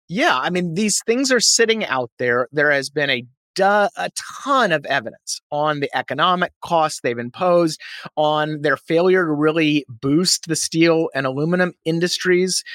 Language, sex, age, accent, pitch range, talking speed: English, male, 30-49, American, 145-190 Hz, 165 wpm